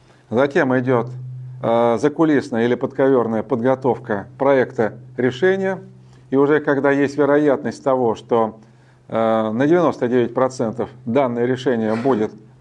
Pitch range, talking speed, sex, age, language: 125-145 Hz, 105 wpm, male, 40-59, Russian